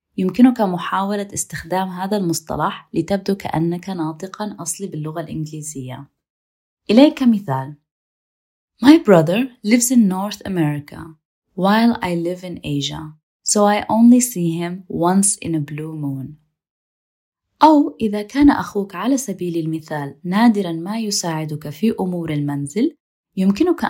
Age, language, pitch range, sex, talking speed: 20-39, Arabic, 160-220 Hz, female, 120 wpm